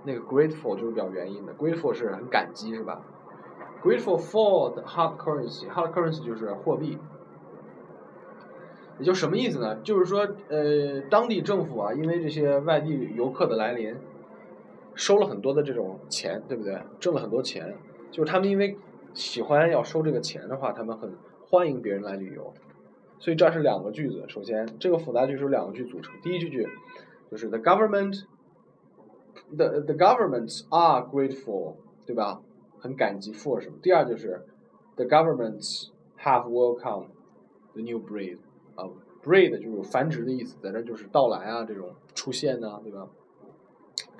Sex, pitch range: male, 115-170 Hz